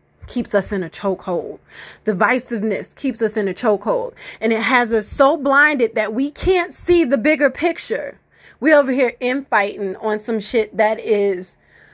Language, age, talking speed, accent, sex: English, 30-49, 165 wpm, American, female